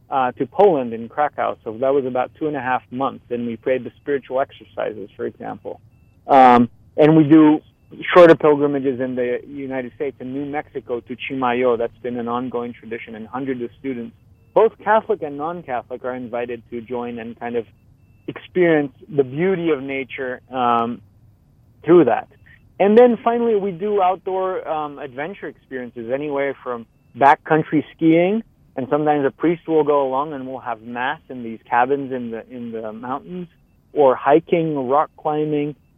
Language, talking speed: English, 170 wpm